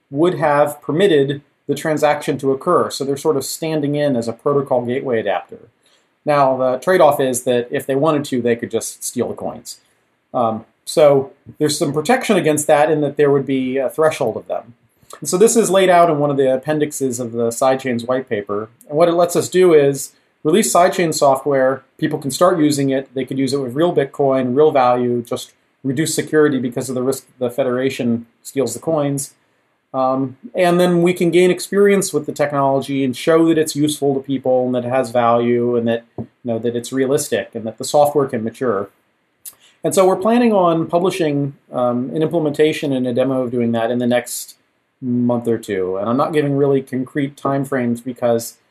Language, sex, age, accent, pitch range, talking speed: English, male, 40-59, American, 125-150 Hz, 205 wpm